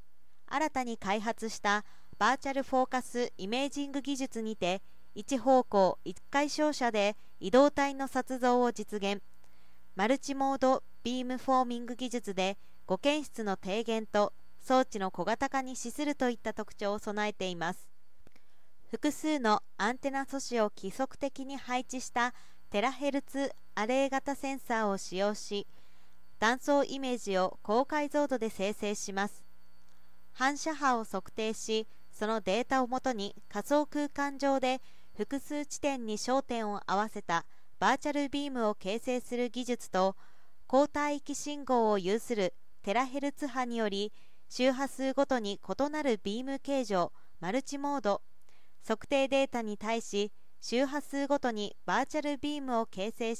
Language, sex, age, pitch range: Japanese, female, 40-59, 205-270 Hz